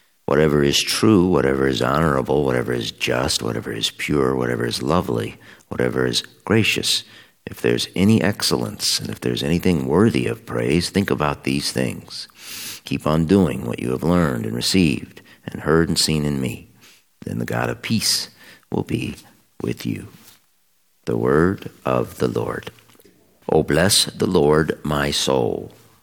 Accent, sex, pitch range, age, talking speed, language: American, male, 65-85 Hz, 50-69, 155 wpm, English